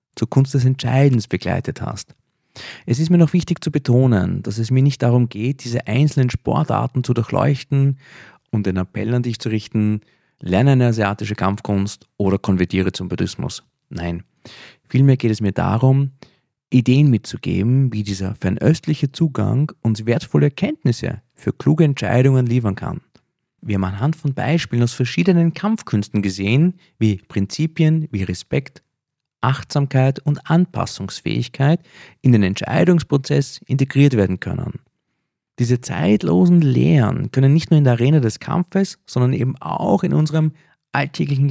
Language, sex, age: German, male, 40-59